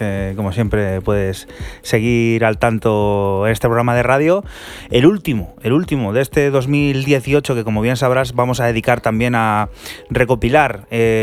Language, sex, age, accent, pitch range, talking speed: Spanish, male, 20-39, Spanish, 105-125 Hz, 155 wpm